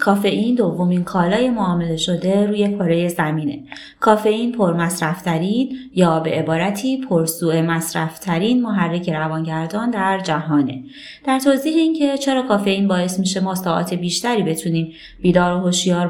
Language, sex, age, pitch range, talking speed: Persian, female, 20-39, 170-225 Hz, 125 wpm